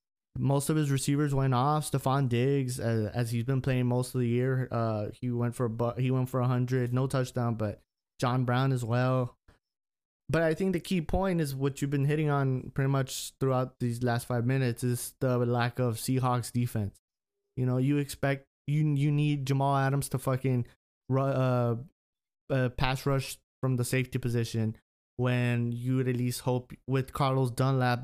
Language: English